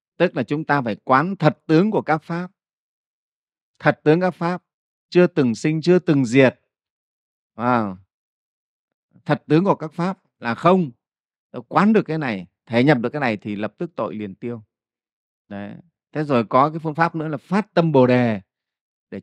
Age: 30-49